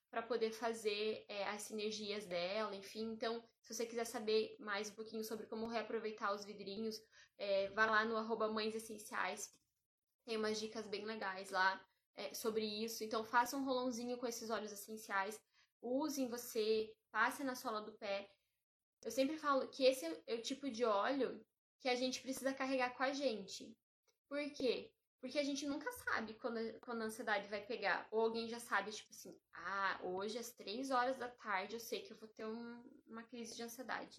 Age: 10-29